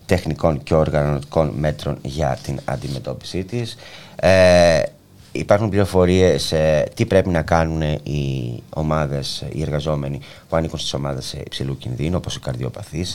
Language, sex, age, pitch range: Greek, male, 30-49, 70-100 Hz